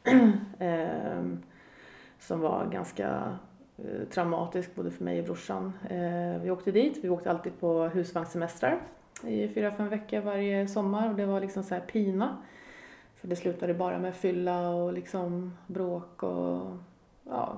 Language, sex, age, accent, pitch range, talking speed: Swedish, female, 30-49, native, 170-205 Hz, 145 wpm